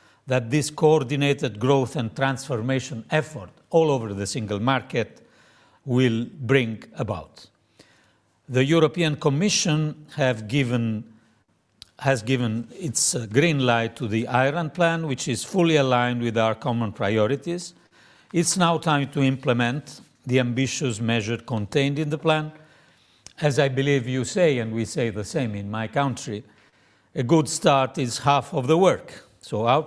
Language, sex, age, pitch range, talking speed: English, male, 50-69, 120-150 Hz, 145 wpm